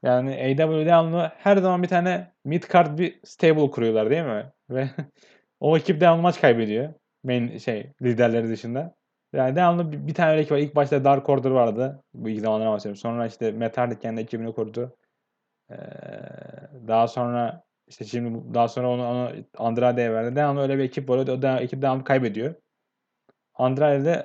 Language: Turkish